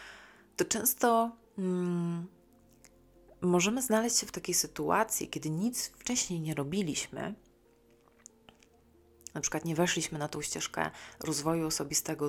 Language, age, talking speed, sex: Polish, 30-49, 105 wpm, female